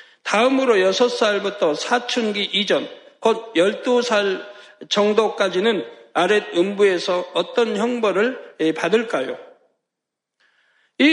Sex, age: male, 60-79